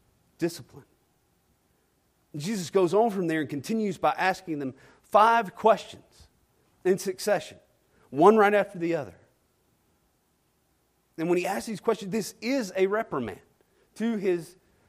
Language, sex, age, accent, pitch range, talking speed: English, male, 40-59, American, 115-190 Hz, 130 wpm